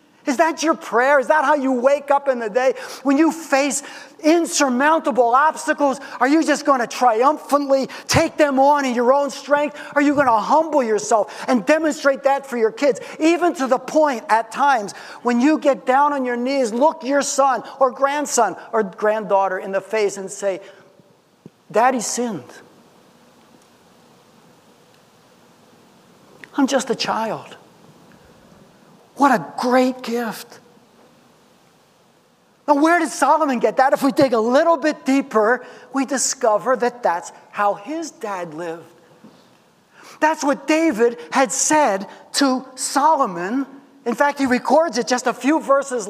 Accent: American